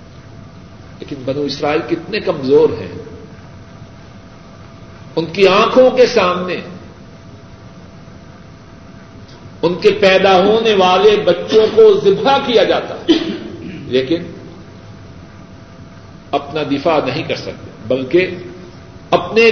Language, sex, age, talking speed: Urdu, male, 50-69, 90 wpm